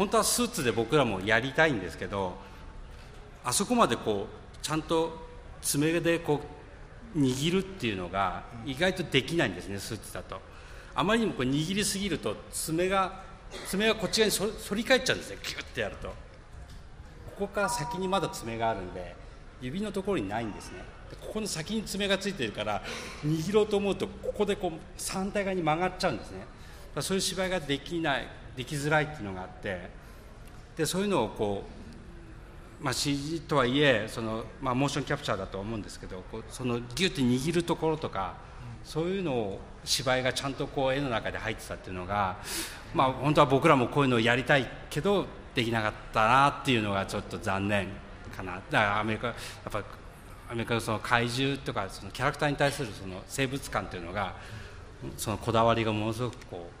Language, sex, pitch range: English, male, 105-165 Hz